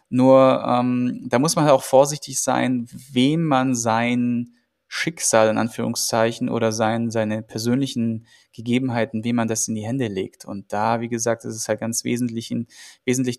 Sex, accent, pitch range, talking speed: male, German, 115-135 Hz, 160 wpm